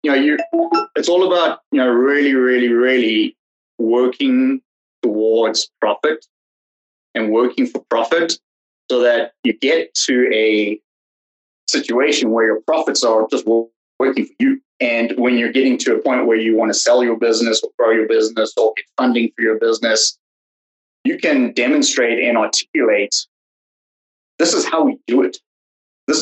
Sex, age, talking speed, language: male, 30-49, 160 wpm, English